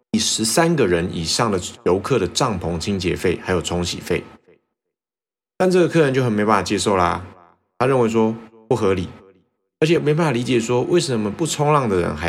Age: 30-49